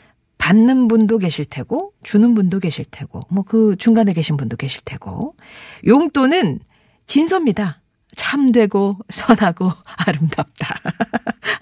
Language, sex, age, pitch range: Korean, female, 40-59, 170-265 Hz